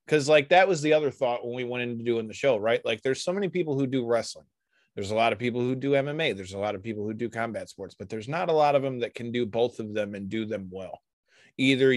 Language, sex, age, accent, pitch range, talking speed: English, male, 20-39, American, 120-145 Hz, 290 wpm